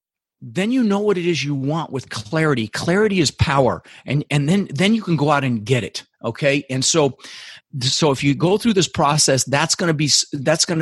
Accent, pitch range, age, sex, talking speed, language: American, 120-160 Hz, 40-59, male, 220 wpm, English